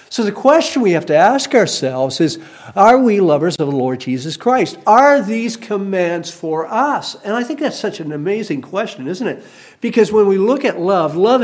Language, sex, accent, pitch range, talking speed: English, male, American, 165-225 Hz, 205 wpm